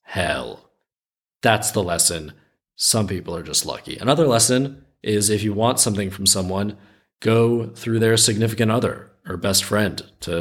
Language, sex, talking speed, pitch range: English, male, 155 wpm, 100-125 Hz